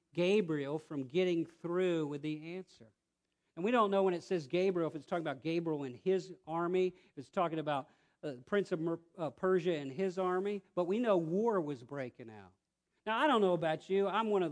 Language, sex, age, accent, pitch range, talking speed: English, male, 50-69, American, 150-210 Hz, 220 wpm